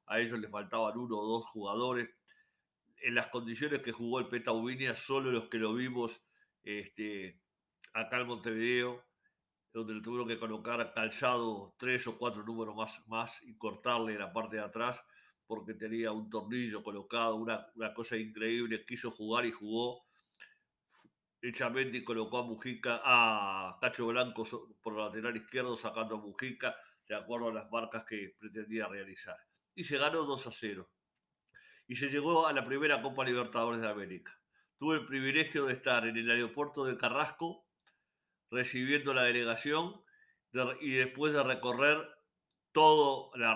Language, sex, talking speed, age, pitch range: Spanish, male, 155 wpm, 50-69, 110-130 Hz